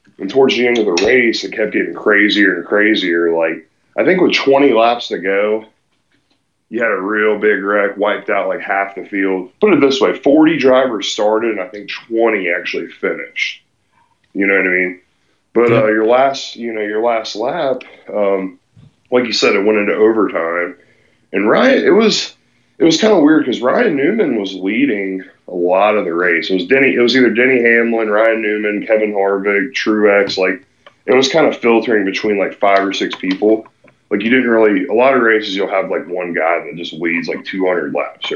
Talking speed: 205 wpm